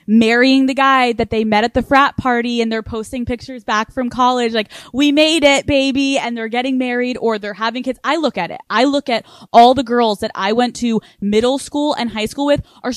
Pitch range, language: 210-255 Hz, English